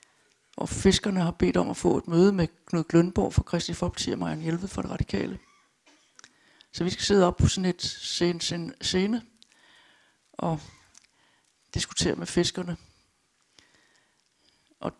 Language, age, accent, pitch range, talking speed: Danish, 60-79, native, 165-200 Hz, 150 wpm